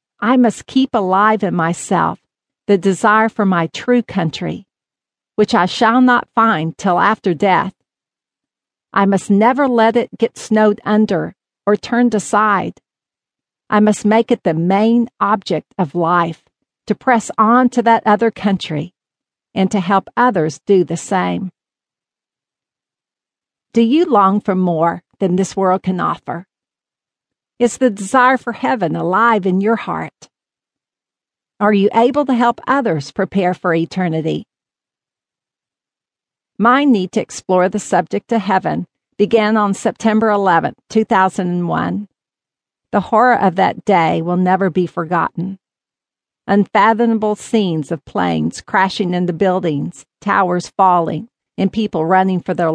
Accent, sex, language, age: American, female, English, 50-69